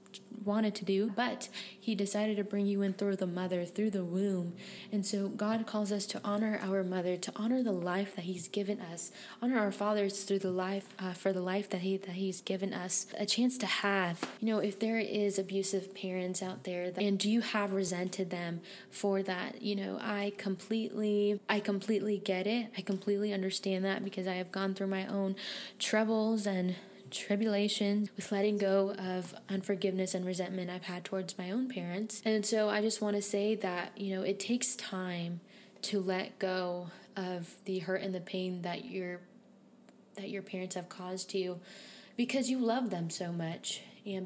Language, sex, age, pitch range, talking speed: English, female, 20-39, 185-210 Hz, 195 wpm